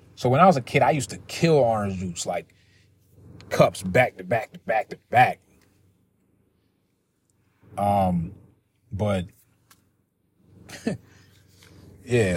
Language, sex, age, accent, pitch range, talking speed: English, male, 30-49, American, 95-110 Hz, 115 wpm